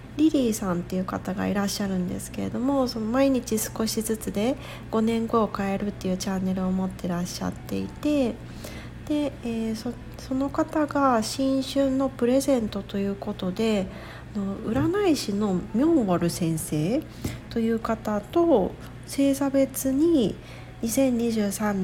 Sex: female